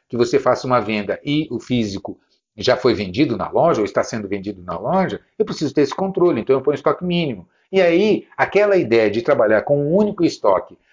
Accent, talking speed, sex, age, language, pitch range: Brazilian, 215 wpm, male, 50-69, Portuguese, 130-195 Hz